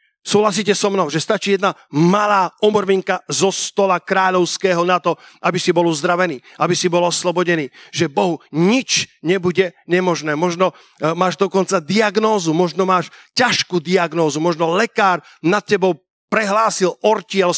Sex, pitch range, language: male, 175-210 Hz, Slovak